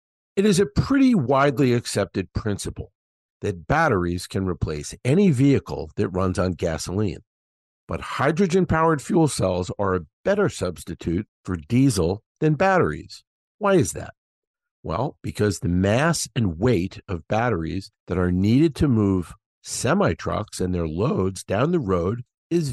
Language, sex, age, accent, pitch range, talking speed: English, male, 50-69, American, 90-145 Hz, 140 wpm